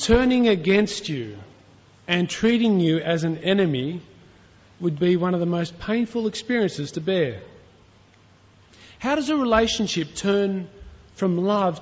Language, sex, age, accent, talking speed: English, male, 40-59, Australian, 130 wpm